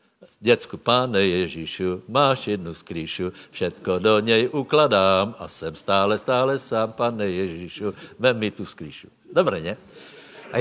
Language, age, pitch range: Slovak, 60-79, 100-135 Hz